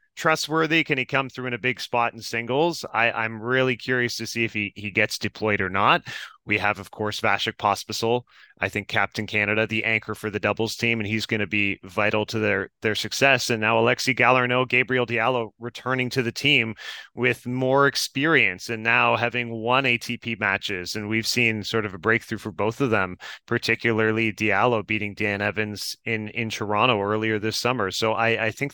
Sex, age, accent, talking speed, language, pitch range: male, 30-49, American, 195 wpm, English, 110-130 Hz